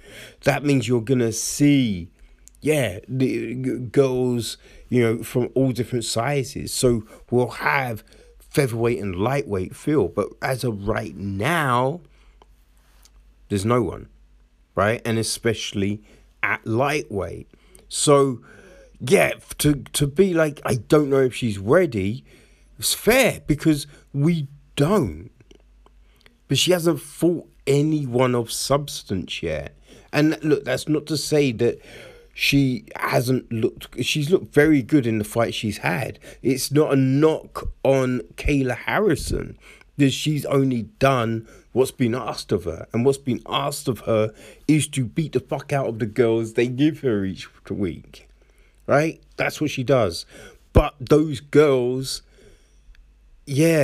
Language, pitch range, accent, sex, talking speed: English, 115-145 Hz, British, male, 135 wpm